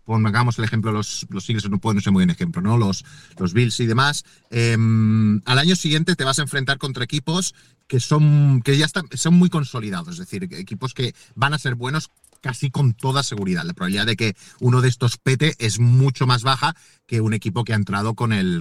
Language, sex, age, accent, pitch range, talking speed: Spanish, male, 30-49, Spanish, 115-160 Hz, 220 wpm